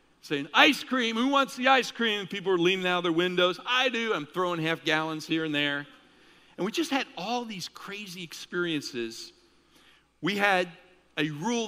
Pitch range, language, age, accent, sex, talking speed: 130-180 Hz, English, 50-69, American, male, 185 wpm